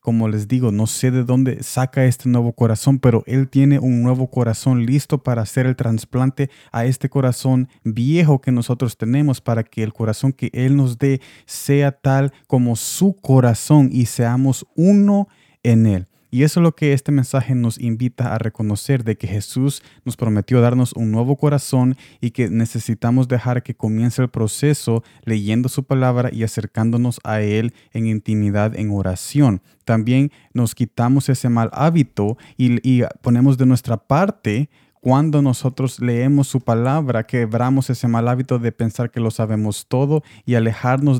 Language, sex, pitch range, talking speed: Spanish, male, 110-135 Hz, 170 wpm